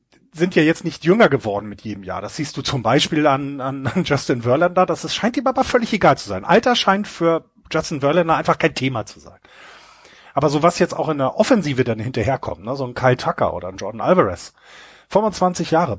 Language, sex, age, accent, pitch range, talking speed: German, male, 30-49, German, 135-175 Hz, 220 wpm